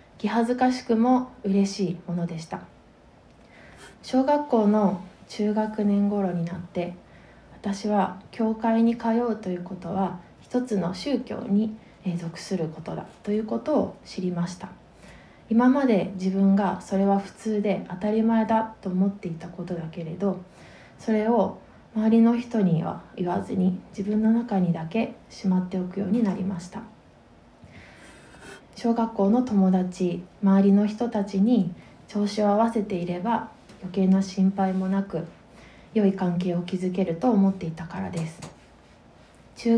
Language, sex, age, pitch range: Japanese, female, 20-39, 185-220 Hz